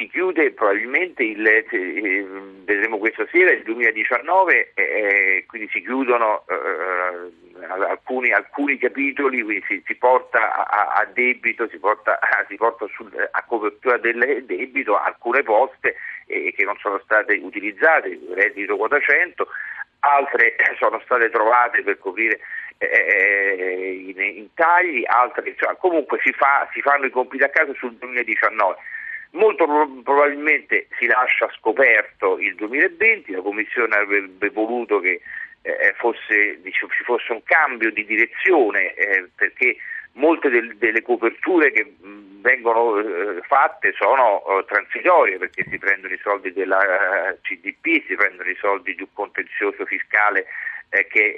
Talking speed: 135 wpm